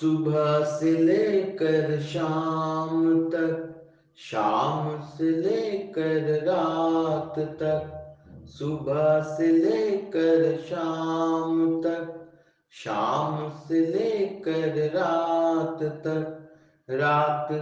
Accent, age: Indian, 30-49